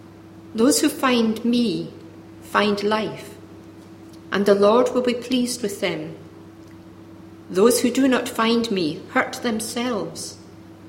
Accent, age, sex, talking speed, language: British, 50-69, female, 120 wpm, English